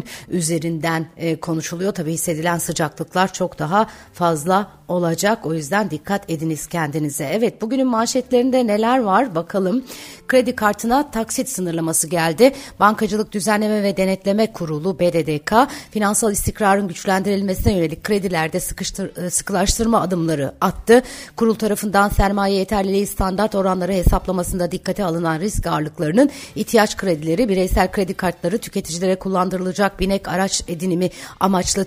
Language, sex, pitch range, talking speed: Turkish, female, 170-215 Hz, 120 wpm